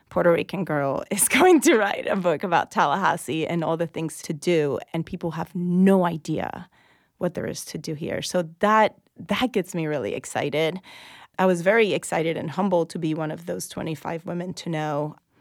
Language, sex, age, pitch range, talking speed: English, female, 30-49, 155-180 Hz, 195 wpm